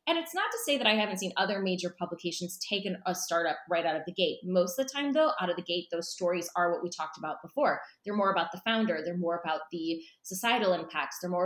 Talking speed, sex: 260 wpm, female